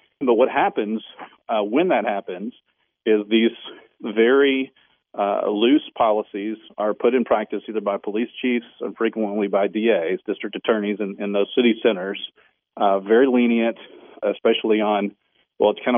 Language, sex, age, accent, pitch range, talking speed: English, male, 40-59, American, 105-120 Hz, 150 wpm